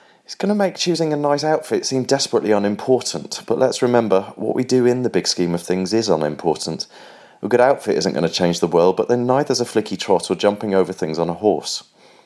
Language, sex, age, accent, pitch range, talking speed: English, male, 30-49, British, 95-125 Hz, 230 wpm